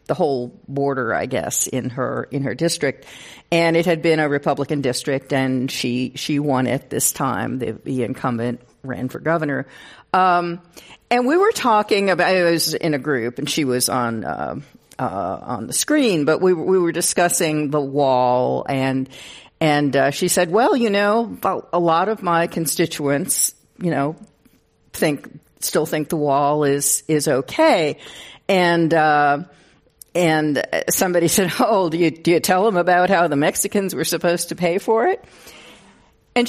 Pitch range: 145-185 Hz